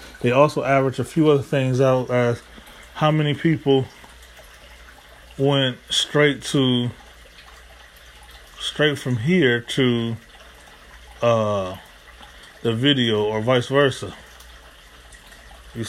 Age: 20-39